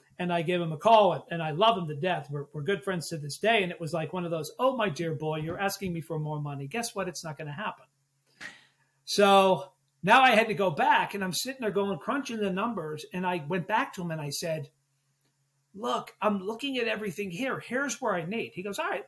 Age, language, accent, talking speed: 50-69, English, American, 255 wpm